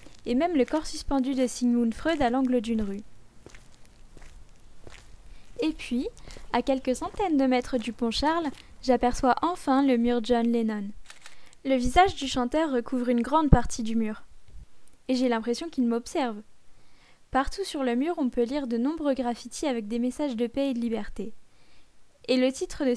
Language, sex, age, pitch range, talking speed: French, female, 10-29, 235-275 Hz, 170 wpm